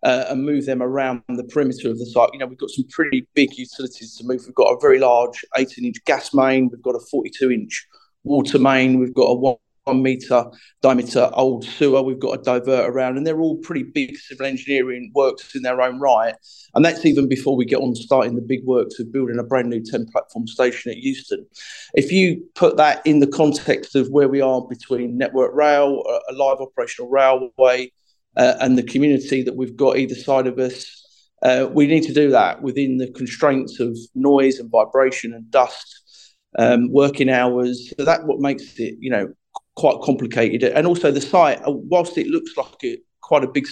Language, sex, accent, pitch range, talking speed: English, male, British, 125-155 Hz, 200 wpm